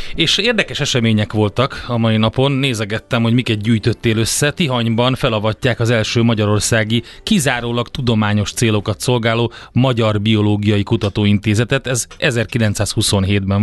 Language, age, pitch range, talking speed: Hungarian, 30-49, 105-125 Hz, 115 wpm